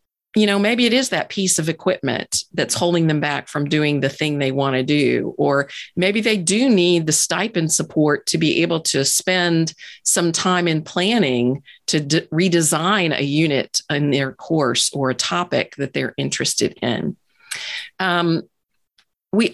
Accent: American